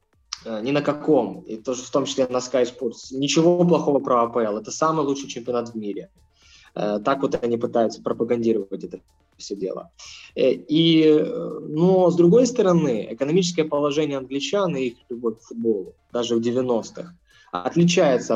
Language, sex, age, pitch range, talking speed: Russian, male, 20-39, 125-160 Hz, 150 wpm